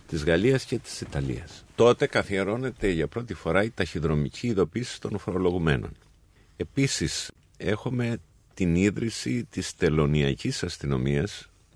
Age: 50-69